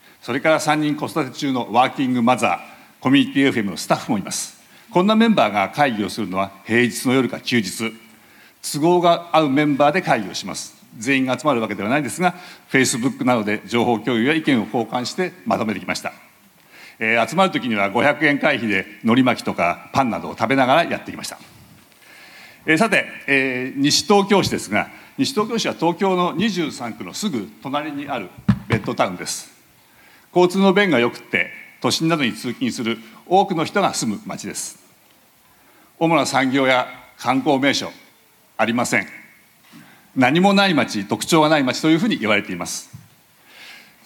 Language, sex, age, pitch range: Japanese, male, 60-79, 125-185 Hz